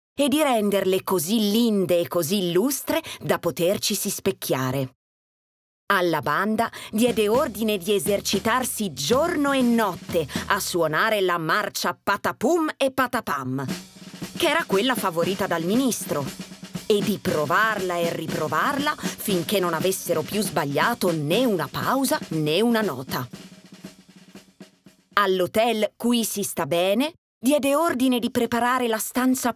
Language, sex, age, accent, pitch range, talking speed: Italian, female, 30-49, native, 175-240 Hz, 125 wpm